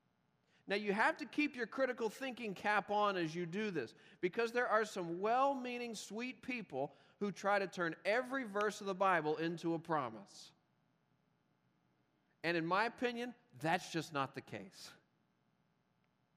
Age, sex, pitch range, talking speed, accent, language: 40-59, male, 155-215 Hz, 155 wpm, American, English